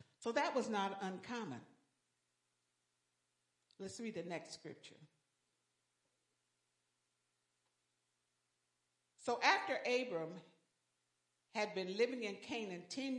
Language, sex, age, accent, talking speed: English, female, 60-79, American, 85 wpm